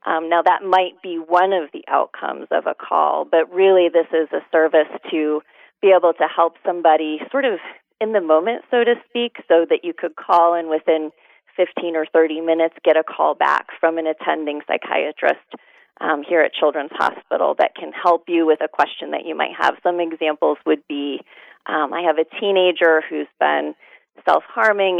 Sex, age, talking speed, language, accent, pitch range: female, 30-49, 190 wpm, English, American, 160-185 Hz